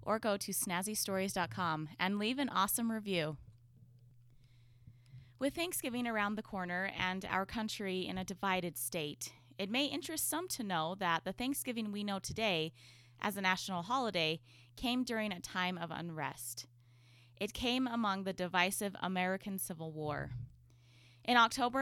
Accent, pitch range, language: American, 155-220 Hz, English